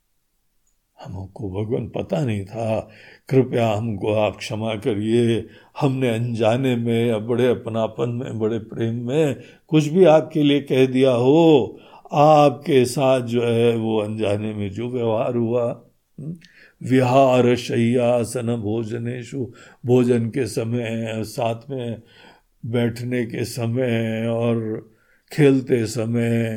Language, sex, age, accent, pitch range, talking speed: Hindi, male, 60-79, native, 110-135 Hz, 115 wpm